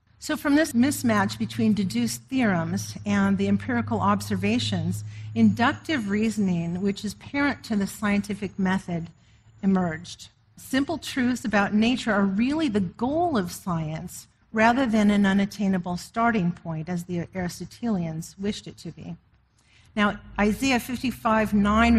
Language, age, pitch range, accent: English, 50-69, 170-225 Hz, American